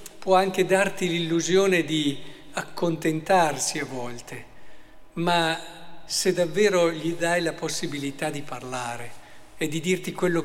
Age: 50-69